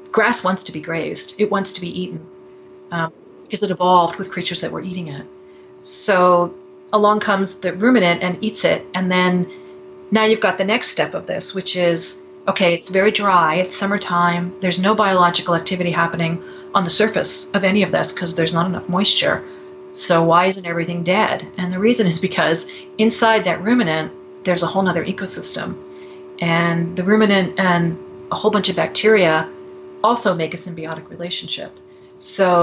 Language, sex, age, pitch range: English, female, 40-59, 165-195 Hz